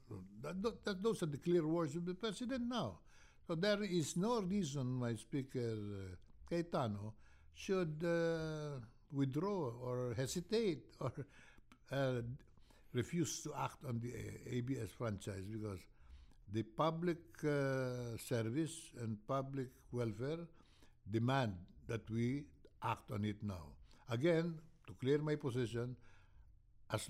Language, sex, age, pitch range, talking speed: English, male, 60-79, 105-155 Hz, 125 wpm